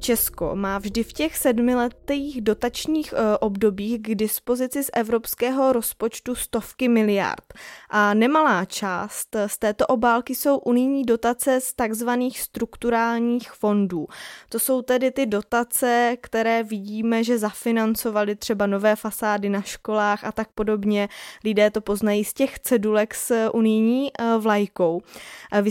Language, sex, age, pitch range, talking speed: Czech, female, 20-39, 215-255 Hz, 130 wpm